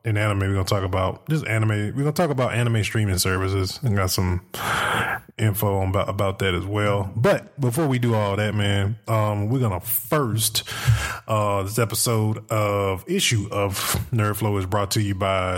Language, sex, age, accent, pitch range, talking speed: English, male, 20-39, American, 100-120 Hz, 195 wpm